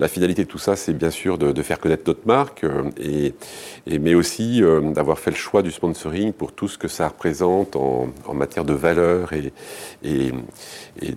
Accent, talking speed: French, 190 wpm